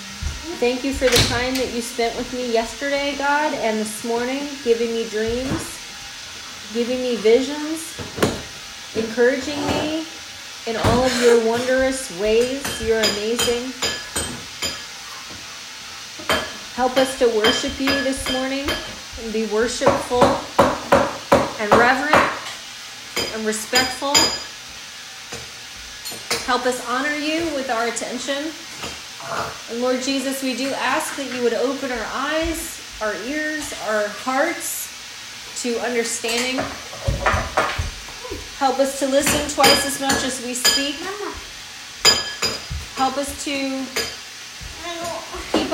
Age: 30-49